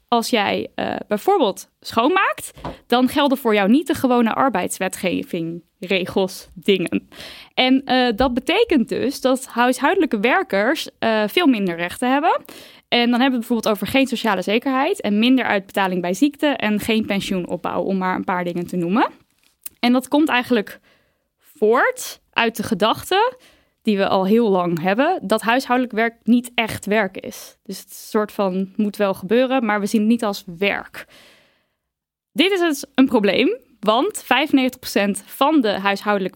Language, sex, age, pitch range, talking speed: Dutch, female, 10-29, 205-270 Hz, 160 wpm